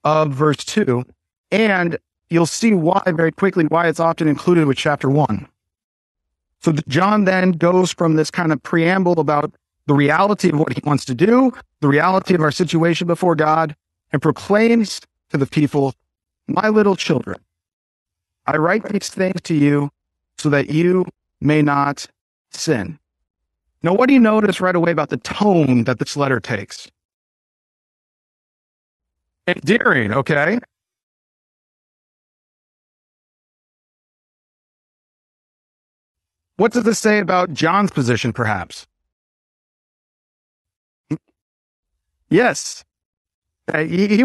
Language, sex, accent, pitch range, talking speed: English, male, American, 135-200 Hz, 120 wpm